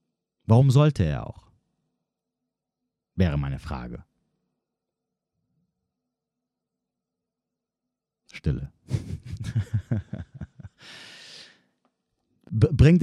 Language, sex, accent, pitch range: German, male, German, 90-125 Hz